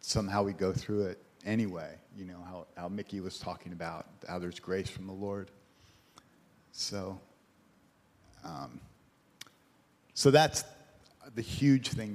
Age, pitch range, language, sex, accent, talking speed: 50-69, 95-125 Hz, English, male, American, 135 wpm